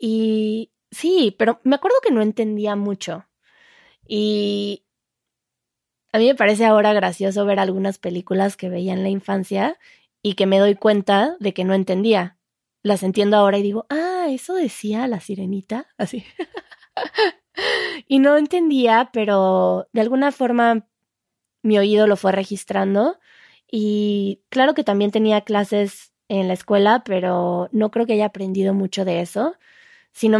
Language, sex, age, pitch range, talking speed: Spanish, female, 20-39, 195-235 Hz, 150 wpm